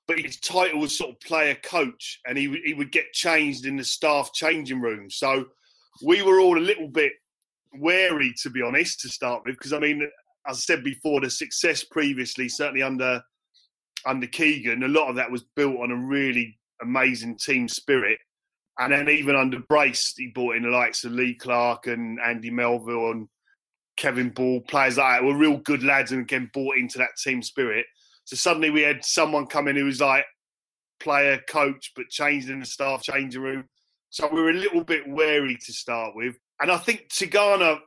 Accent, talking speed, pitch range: British, 200 wpm, 130-165 Hz